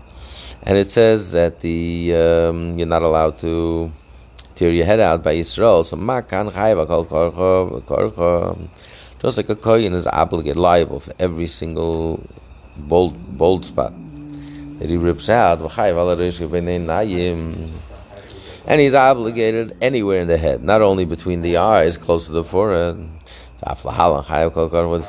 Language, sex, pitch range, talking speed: English, male, 85-110 Hz, 120 wpm